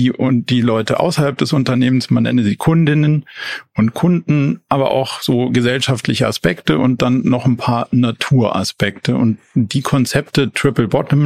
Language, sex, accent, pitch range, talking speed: German, male, German, 120-140 Hz, 150 wpm